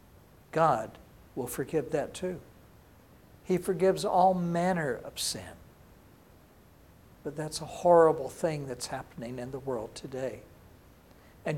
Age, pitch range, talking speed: 60-79, 140-190 Hz, 120 wpm